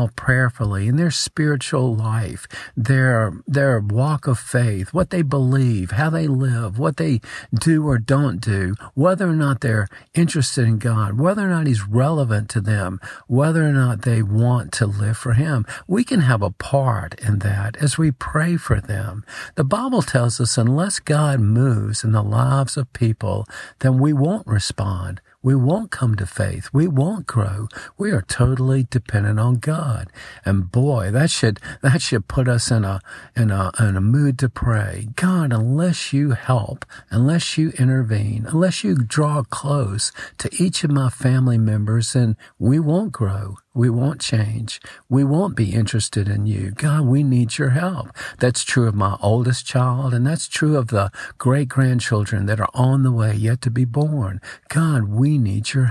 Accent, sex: American, male